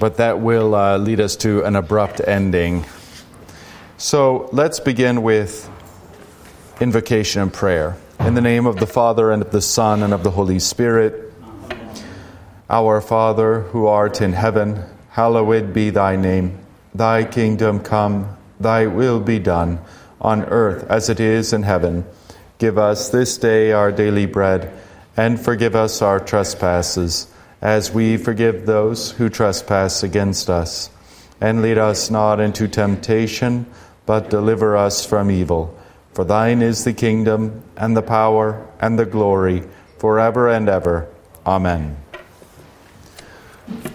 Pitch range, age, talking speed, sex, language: 95-115 Hz, 40-59, 140 wpm, male, English